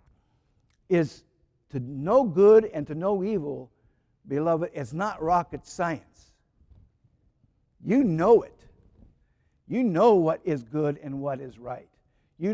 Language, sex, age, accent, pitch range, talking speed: English, male, 60-79, American, 160-230 Hz, 125 wpm